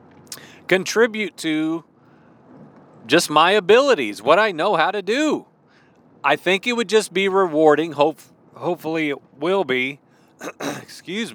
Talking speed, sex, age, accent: 125 wpm, male, 40-59, American